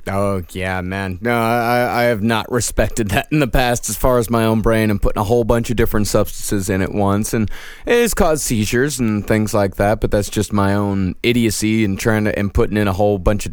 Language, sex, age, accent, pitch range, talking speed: English, male, 20-39, American, 100-120 Hz, 245 wpm